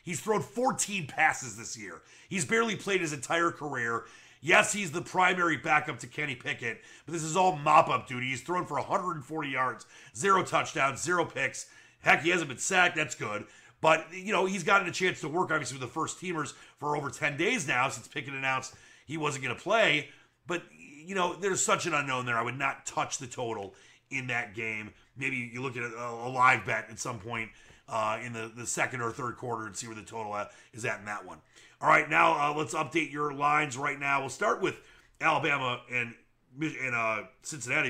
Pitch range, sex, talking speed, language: 120-160 Hz, male, 205 wpm, English